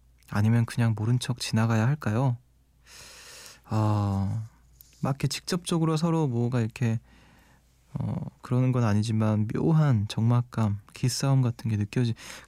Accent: native